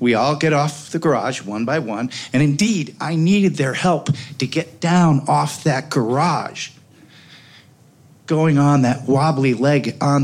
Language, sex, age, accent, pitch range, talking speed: English, male, 40-59, American, 135-175 Hz, 160 wpm